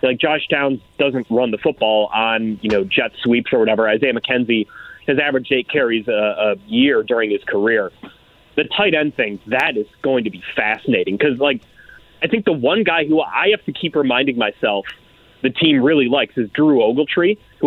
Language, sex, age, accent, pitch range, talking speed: English, male, 30-49, American, 120-165 Hz, 195 wpm